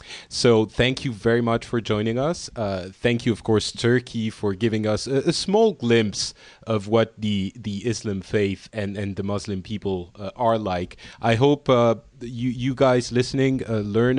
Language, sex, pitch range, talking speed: English, male, 100-125 Hz, 185 wpm